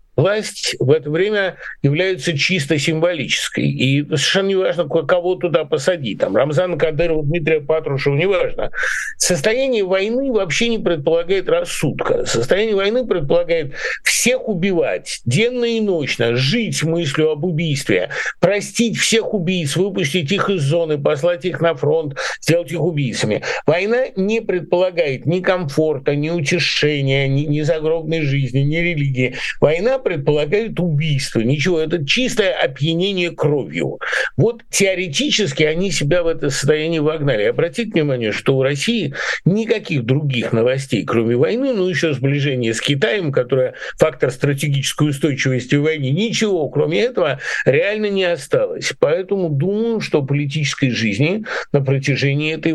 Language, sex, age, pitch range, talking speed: Russian, male, 50-69, 145-200 Hz, 130 wpm